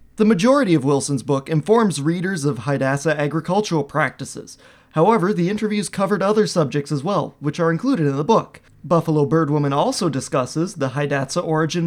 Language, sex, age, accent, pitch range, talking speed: English, male, 20-39, American, 135-175 Hz, 160 wpm